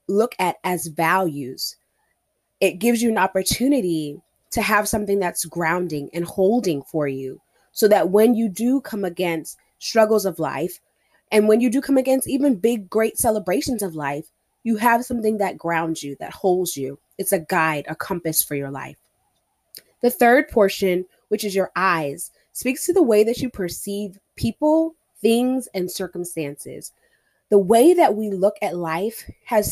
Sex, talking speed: female, 170 wpm